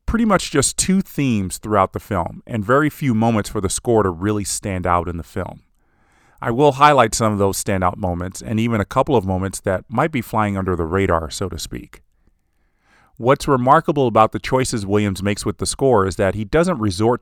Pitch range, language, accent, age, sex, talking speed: 95-120 Hz, English, American, 40-59, male, 215 wpm